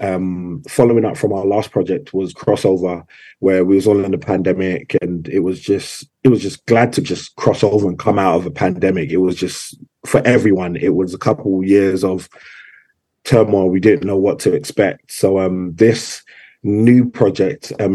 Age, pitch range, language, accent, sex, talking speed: 20-39, 95-110 Hz, English, British, male, 195 wpm